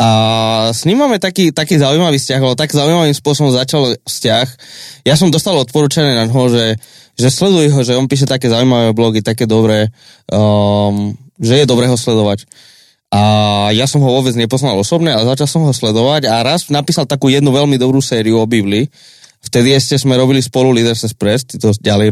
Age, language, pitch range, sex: 20-39, Slovak, 110-140 Hz, male